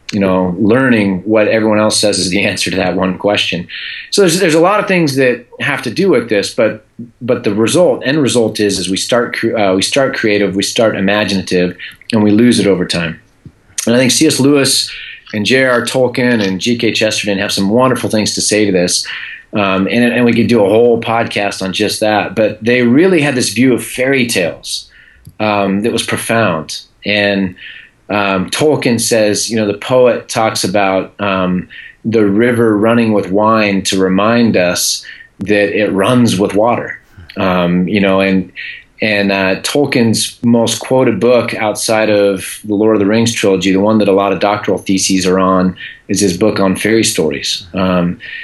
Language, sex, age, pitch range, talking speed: English, male, 30-49, 95-115 Hz, 190 wpm